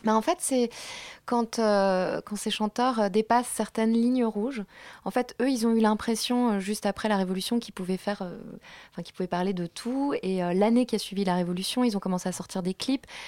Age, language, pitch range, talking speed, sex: 20-39, French, 190-230 Hz, 225 wpm, female